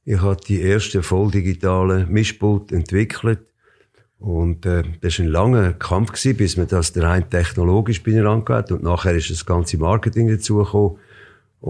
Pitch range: 90-110 Hz